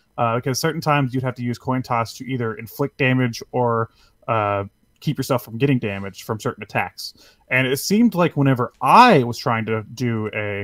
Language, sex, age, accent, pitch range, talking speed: English, male, 30-49, American, 110-145 Hz, 195 wpm